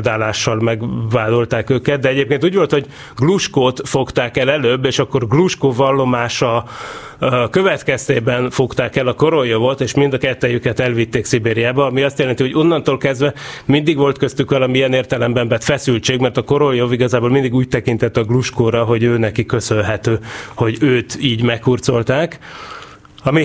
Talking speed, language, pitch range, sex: 145 wpm, Hungarian, 115-135 Hz, male